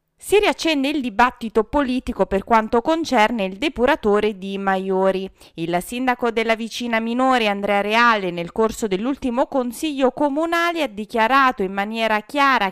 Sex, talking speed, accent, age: female, 135 wpm, native, 30-49